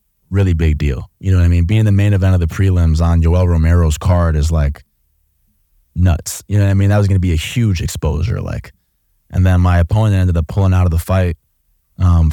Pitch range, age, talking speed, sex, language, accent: 85-105 Hz, 20-39, 235 wpm, male, English, American